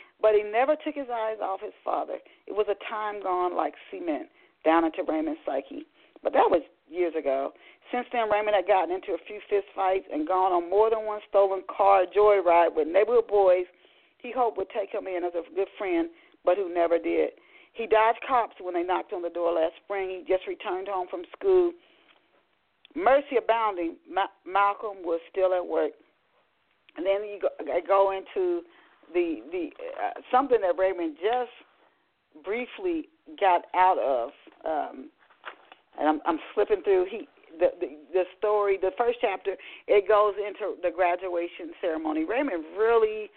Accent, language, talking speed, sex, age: American, English, 170 wpm, female, 40-59